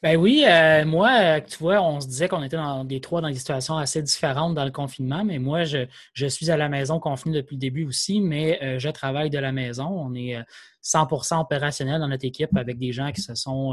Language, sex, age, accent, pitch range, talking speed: French, male, 20-39, Canadian, 130-150 Hz, 240 wpm